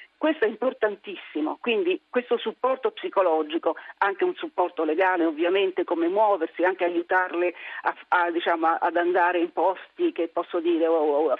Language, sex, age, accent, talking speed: Italian, female, 50-69, native, 135 wpm